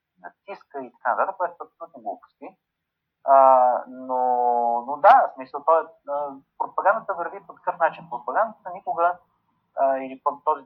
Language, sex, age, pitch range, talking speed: Bulgarian, male, 30-49, 130-175 Hz, 140 wpm